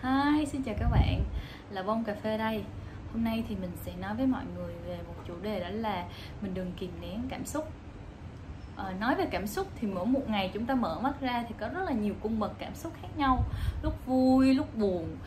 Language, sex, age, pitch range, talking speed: Vietnamese, female, 10-29, 200-260 Hz, 235 wpm